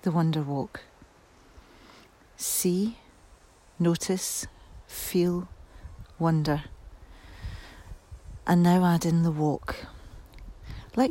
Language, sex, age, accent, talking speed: English, female, 40-59, British, 75 wpm